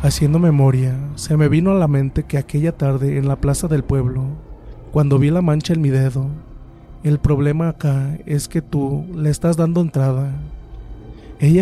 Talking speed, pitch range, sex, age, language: 175 wpm, 130-150 Hz, male, 30-49, Spanish